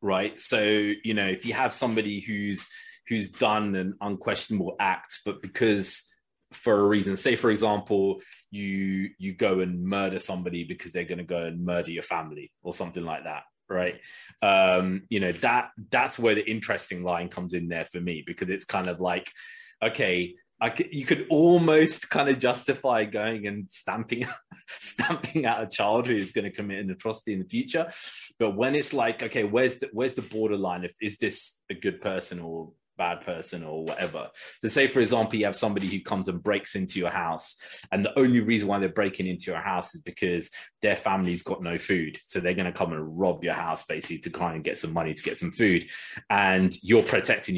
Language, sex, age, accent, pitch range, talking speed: English, male, 20-39, British, 90-110 Hz, 200 wpm